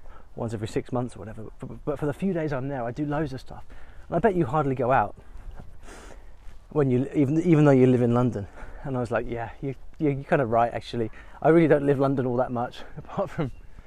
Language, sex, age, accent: English, male, 20-39, British